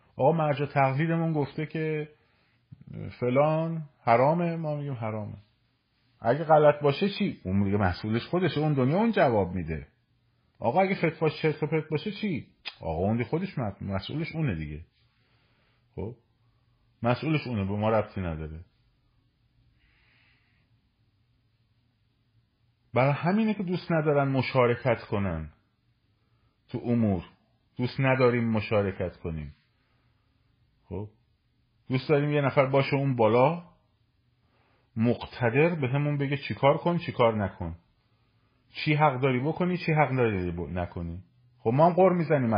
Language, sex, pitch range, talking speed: Persian, male, 110-145 Hz, 125 wpm